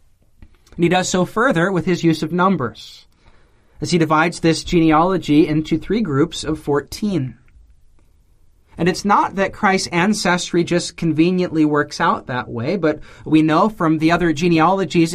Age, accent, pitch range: 30-49, American, 135-180 Hz